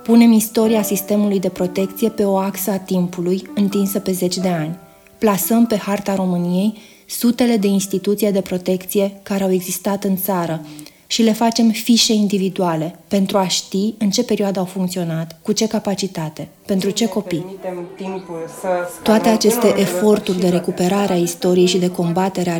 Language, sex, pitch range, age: Romanian, female, 175-205 Hz, 20-39